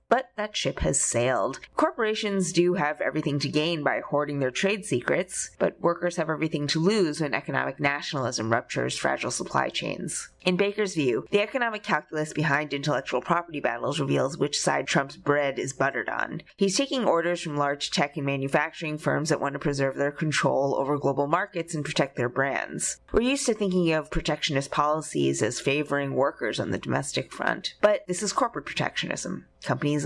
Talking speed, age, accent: 180 wpm, 30-49, American